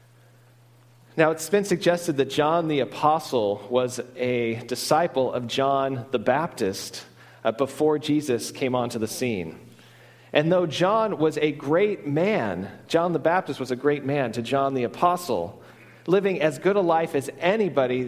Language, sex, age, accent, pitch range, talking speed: English, male, 40-59, American, 120-160 Hz, 155 wpm